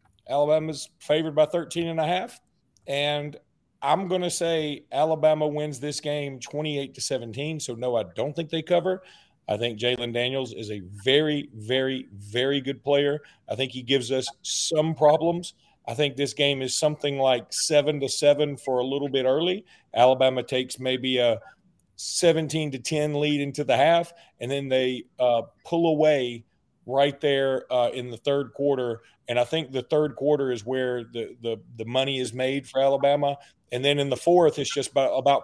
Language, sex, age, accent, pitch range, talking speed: English, male, 40-59, American, 130-150 Hz, 180 wpm